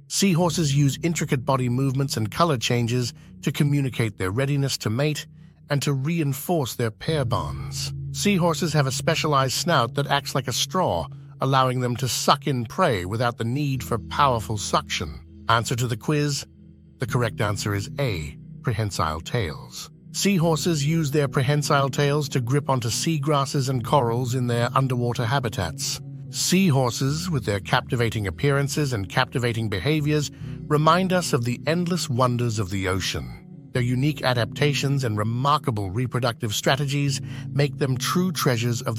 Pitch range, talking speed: 120-150 Hz, 150 wpm